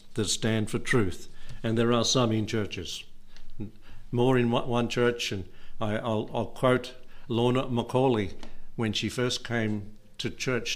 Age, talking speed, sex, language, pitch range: 60-79, 145 wpm, male, English, 105-125 Hz